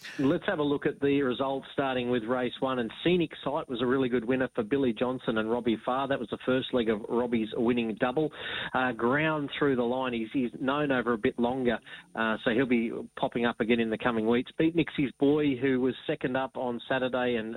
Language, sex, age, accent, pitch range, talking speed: English, male, 30-49, Australian, 115-135 Hz, 230 wpm